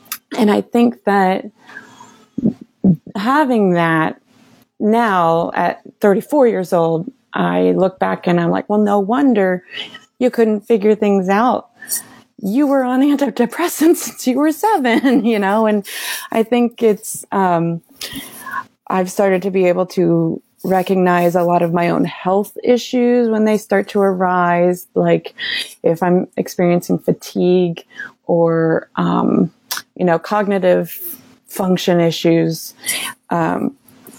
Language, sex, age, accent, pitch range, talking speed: English, female, 30-49, American, 175-220 Hz, 125 wpm